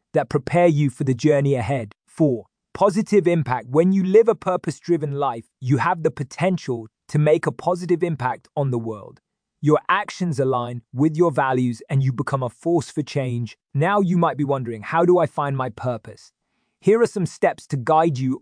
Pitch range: 130-175 Hz